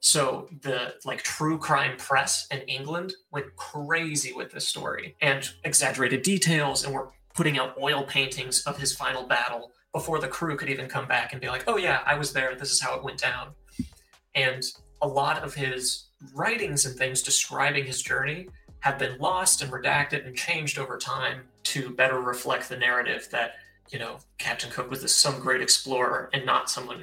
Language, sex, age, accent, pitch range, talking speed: English, male, 30-49, American, 130-145 Hz, 185 wpm